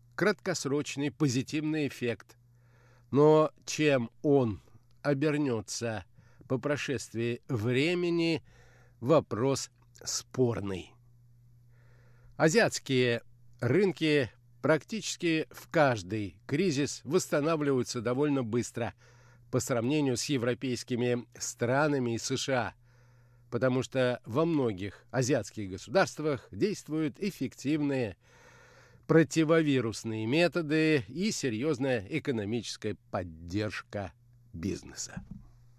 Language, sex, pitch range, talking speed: Russian, male, 120-150 Hz, 70 wpm